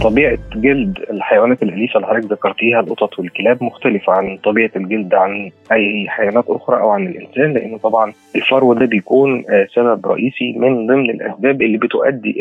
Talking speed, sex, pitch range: 155 wpm, male, 105-125 Hz